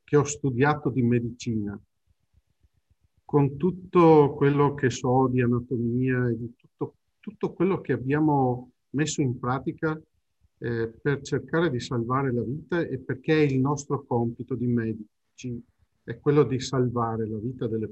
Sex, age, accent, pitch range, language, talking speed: male, 50-69, native, 110-140 Hz, Italian, 145 wpm